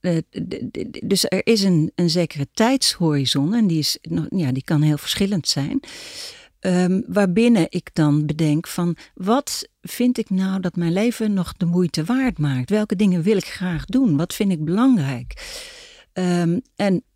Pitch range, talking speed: 170-220 Hz, 145 wpm